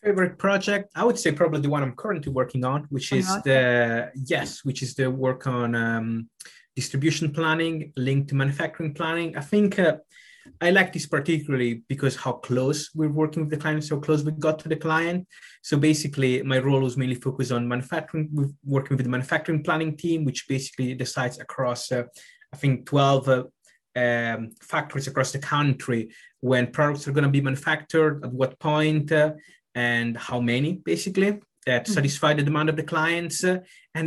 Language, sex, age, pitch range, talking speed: English, male, 20-39, 130-155 Hz, 180 wpm